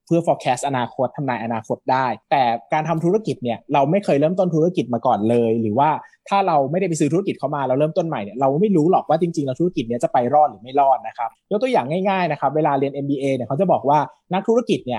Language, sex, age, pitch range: Thai, male, 20-39, 125-175 Hz